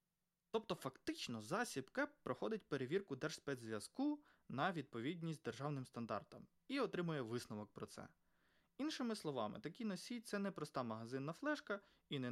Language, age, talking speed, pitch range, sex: Ukrainian, 20-39, 135 wpm, 130-200 Hz, male